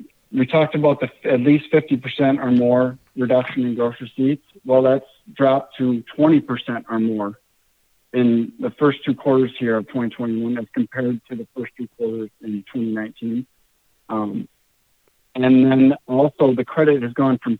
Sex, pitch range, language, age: male, 115-140 Hz, English, 50-69